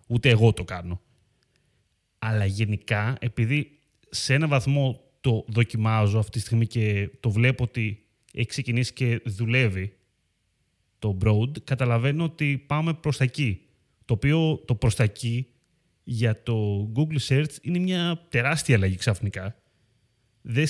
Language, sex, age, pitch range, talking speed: Greek, male, 30-49, 110-145 Hz, 135 wpm